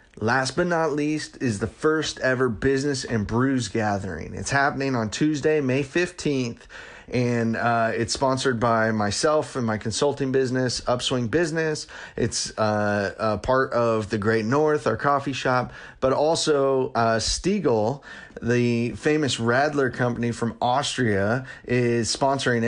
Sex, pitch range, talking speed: male, 115-145 Hz, 140 wpm